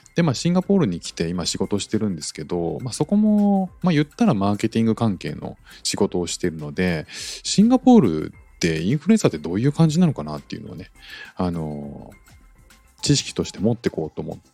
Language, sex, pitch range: Japanese, male, 85-145 Hz